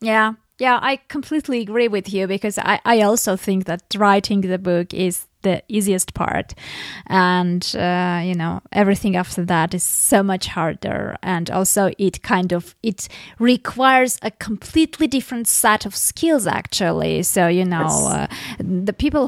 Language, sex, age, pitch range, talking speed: English, female, 20-39, 190-230 Hz, 160 wpm